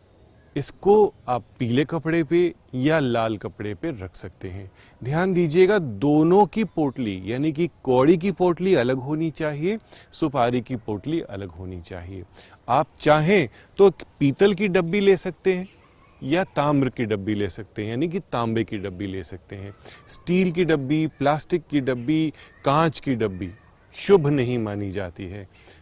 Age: 30-49